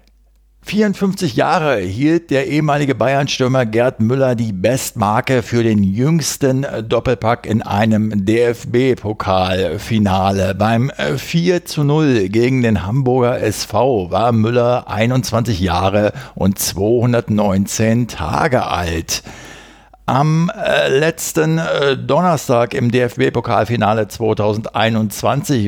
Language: German